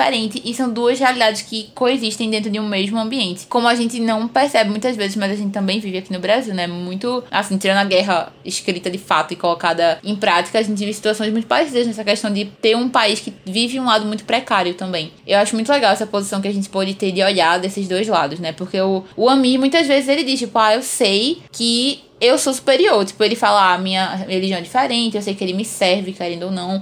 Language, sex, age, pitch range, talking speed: Portuguese, female, 20-39, 190-240 Hz, 245 wpm